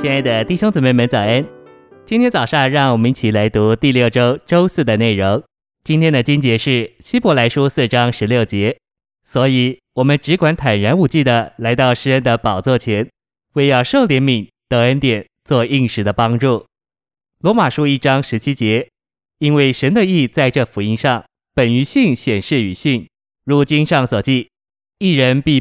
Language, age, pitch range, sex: Chinese, 20-39, 120-150 Hz, male